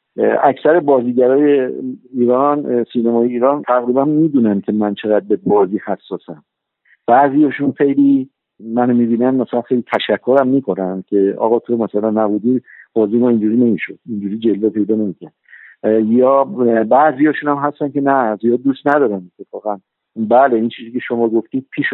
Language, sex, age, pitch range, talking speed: Persian, male, 50-69, 110-135 Hz, 145 wpm